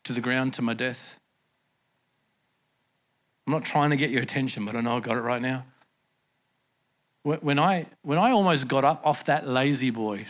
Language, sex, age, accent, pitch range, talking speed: English, male, 50-69, Australian, 150-215 Hz, 180 wpm